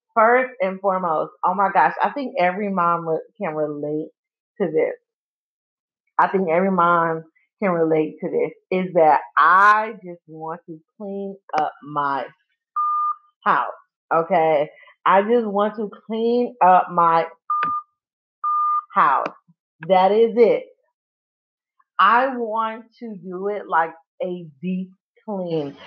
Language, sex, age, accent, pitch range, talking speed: English, female, 30-49, American, 165-240 Hz, 125 wpm